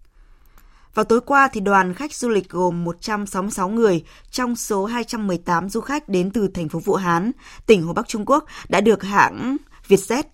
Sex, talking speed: female, 180 wpm